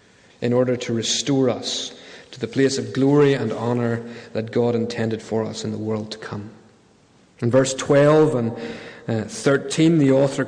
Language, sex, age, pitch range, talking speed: English, male, 30-49, 115-150 Hz, 170 wpm